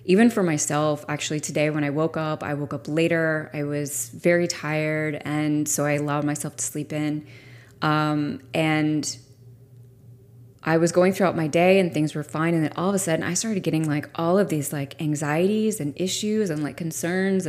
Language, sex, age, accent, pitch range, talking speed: English, female, 20-39, American, 140-165 Hz, 195 wpm